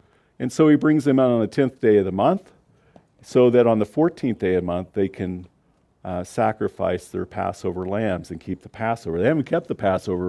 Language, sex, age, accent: English, male, 50-69, American